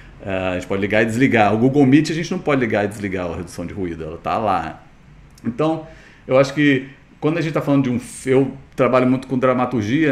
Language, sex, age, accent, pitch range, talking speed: Portuguese, male, 40-59, Brazilian, 110-150 Hz, 230 wpm